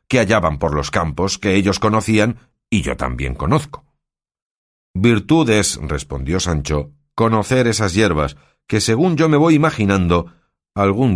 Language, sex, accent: Spanish, male, Spanish